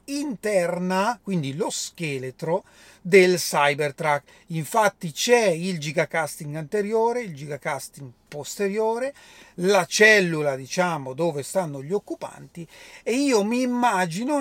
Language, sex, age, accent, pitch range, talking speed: Italian, male, 40-59, native, 165-215 Hz, 105 wpm